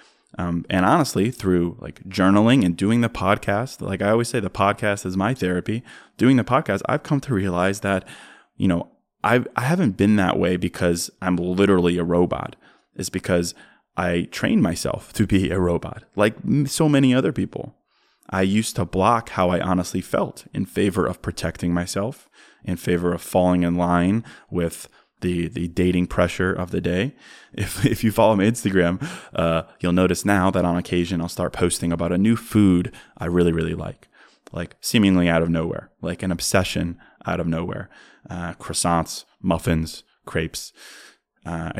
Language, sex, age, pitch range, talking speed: English, male, 20-39, 85-100 Hz, 175 wpm